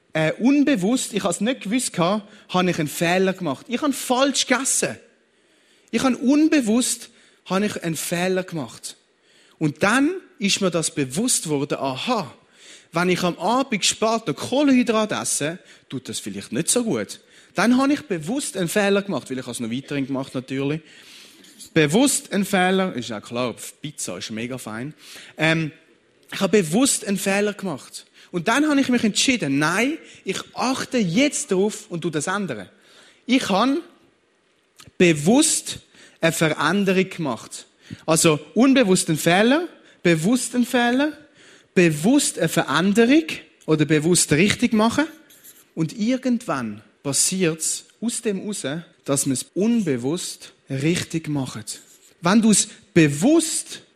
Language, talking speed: Dutch, 140 wpm